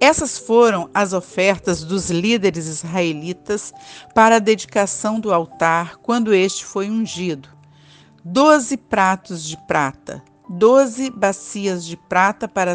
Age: 50-69